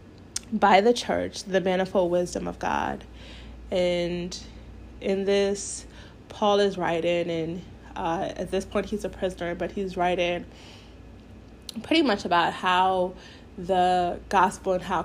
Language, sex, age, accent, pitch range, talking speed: English, female, 20-39, American, 170-195 Hz, 130 wpm